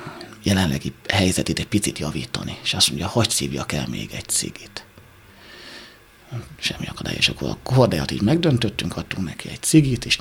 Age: 60-79